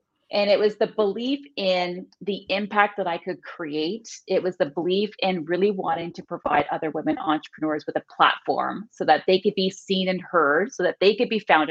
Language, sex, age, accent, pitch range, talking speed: English, female, 30-49, American, 165-200 Hz, 210 wpm